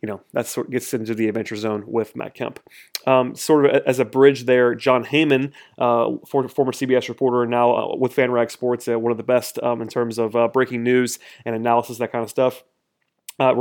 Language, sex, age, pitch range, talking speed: English, male, 30-49, 120-130 Hz, 235 wpm